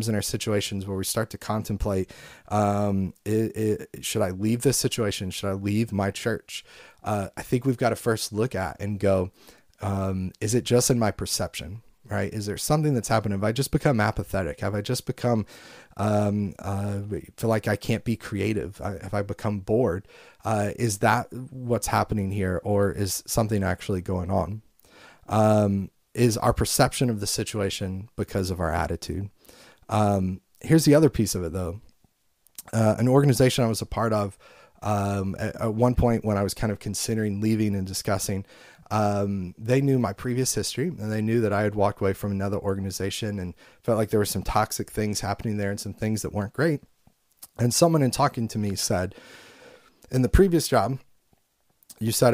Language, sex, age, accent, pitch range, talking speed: English, male, 30-49, American, 100-115 Hz, 185 wpm